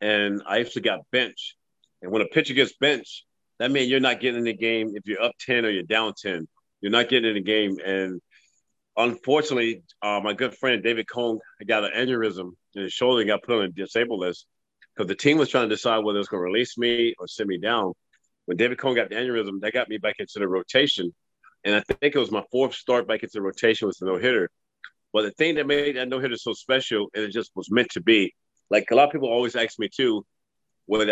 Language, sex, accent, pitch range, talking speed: English, male, American, 105-125 Hz, 245 wpm